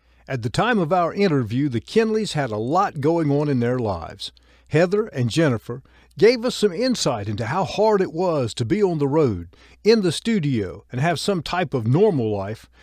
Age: 50-69